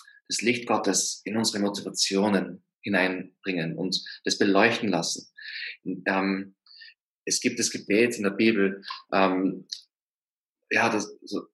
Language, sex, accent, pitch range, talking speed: German, male, German, 95-115 Hz, 105 wpm